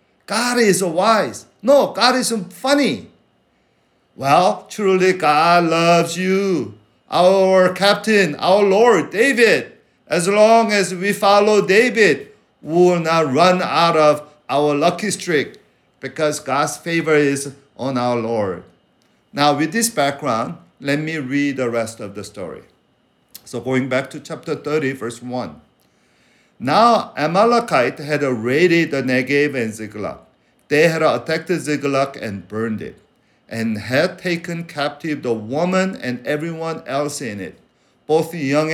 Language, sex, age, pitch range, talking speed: English, male, 50-69, 130-180 Hz, 140 wpm